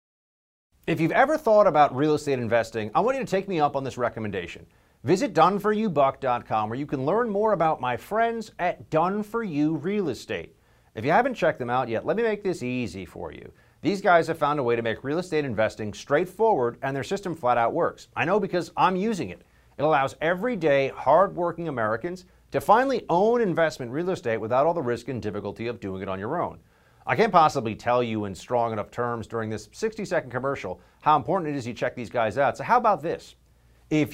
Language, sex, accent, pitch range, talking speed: English, male, American, 120-185 Hz, 215 wpm